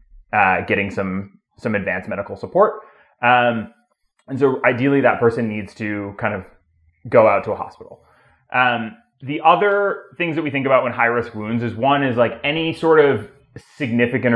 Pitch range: 105-130 Hz